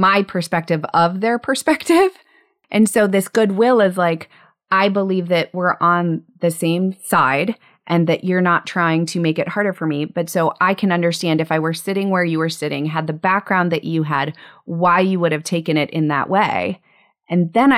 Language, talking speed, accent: English, 205 wpm, American